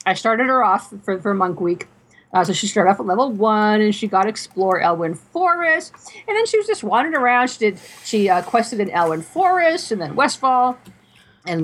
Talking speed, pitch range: 215 wpm, 190-255 Hz